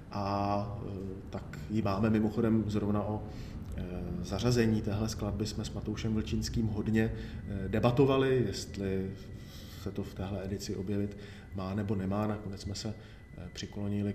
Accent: native